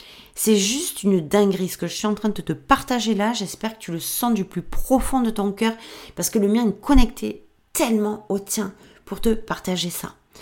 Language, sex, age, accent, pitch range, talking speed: French, female, 40-59, French, 175-230 Hz, 220 wpm